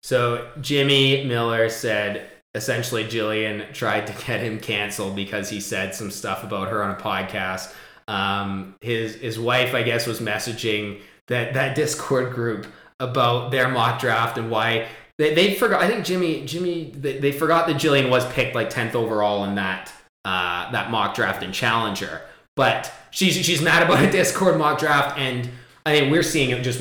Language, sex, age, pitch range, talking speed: English, male, 20-39, 115-145 Hz, 180 wpm